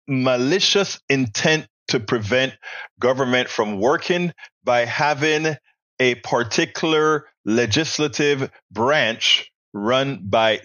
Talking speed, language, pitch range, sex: 85 wpm, English, 115-155 Hz, male